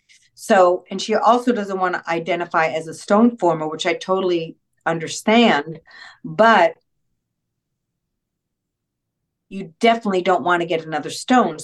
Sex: female